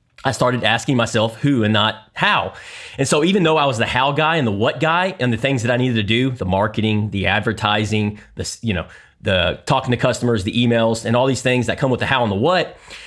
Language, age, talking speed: English, 30-49, 250 wpm